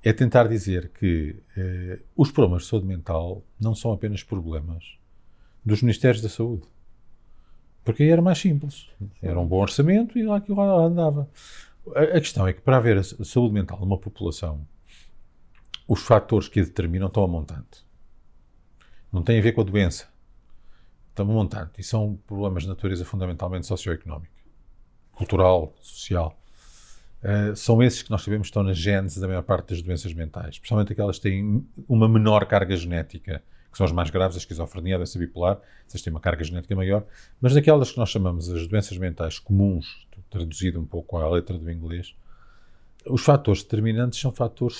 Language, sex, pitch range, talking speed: Portuguese, male, 90-115 Hz, 175 wpm